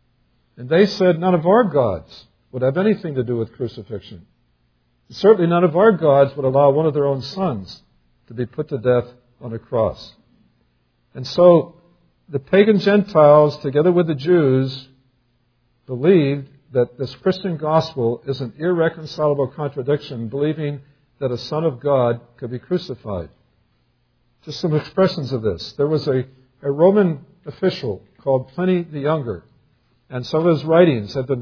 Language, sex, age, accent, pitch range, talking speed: English, male, 60-79, American, 125-165 Hz, 160 wpm